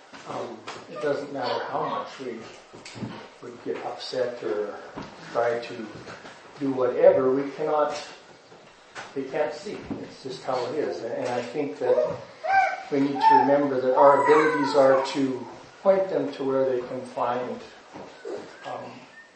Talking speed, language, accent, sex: 145 wpm, English, American, male